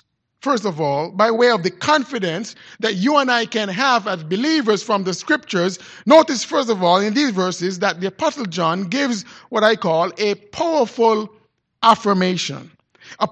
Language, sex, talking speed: English, male, 170 wpm